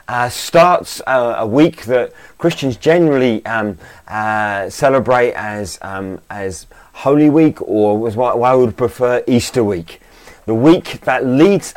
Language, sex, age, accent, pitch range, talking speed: English, male, 30-49, British, 100-135 Hz, 150 wpm